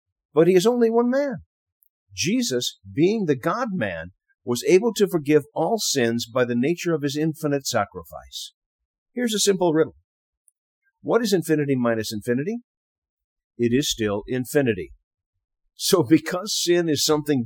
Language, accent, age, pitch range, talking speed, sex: English, American, 50-69, 110-165 Hz, 140 wpm, male